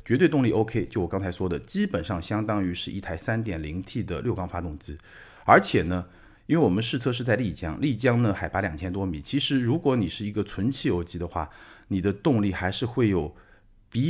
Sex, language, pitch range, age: male, Chinese, 95-140 Hz, 50-69